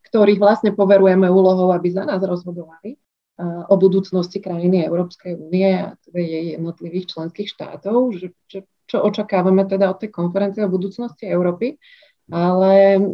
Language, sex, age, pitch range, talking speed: Slovak, female, 30-49, 190-220 Hz, 140 wpm